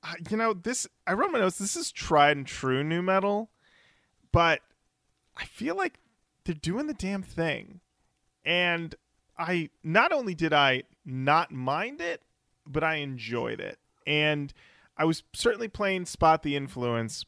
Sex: male